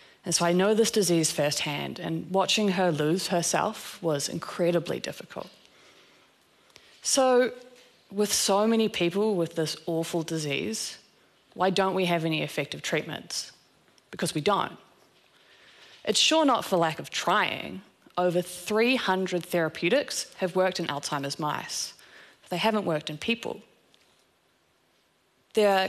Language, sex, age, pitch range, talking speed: German, female, 20-39, 160-210 Hz, 125 wpm